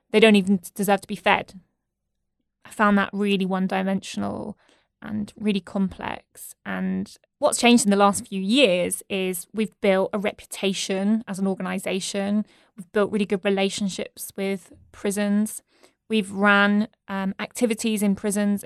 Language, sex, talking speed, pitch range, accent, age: English, female, 140 wpm, 195-215 Hz, British, 20-39